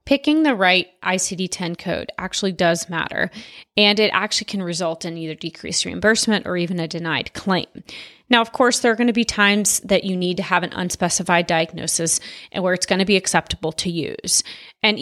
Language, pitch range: English, 175-220 Hz